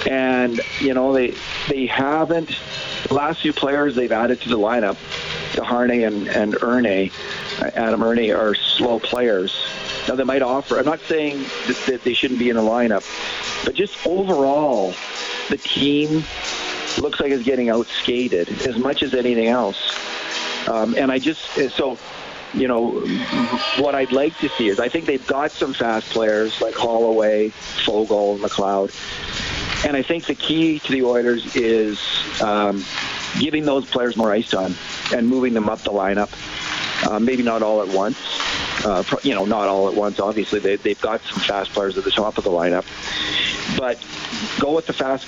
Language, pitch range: English, 105-135 Hz